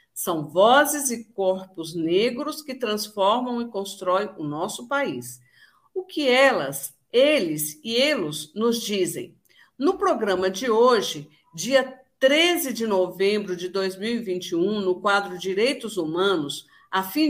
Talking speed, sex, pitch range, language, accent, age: 125 wpm, female, 190-280 Hz, Portuguese, Brazilian, 50-69